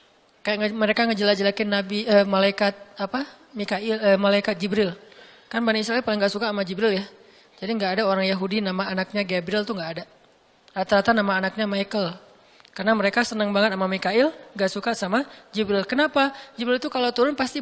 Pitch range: 200-260 Hz